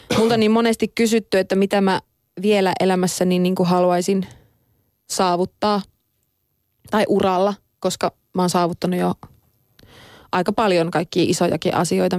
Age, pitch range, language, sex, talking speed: 20-39, 155-195 Hz, Finnish, female, 125 wpm